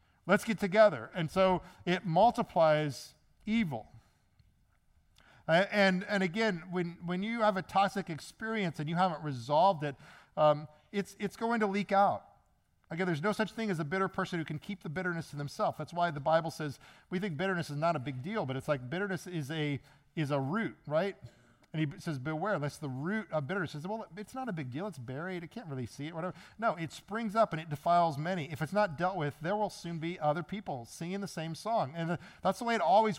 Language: English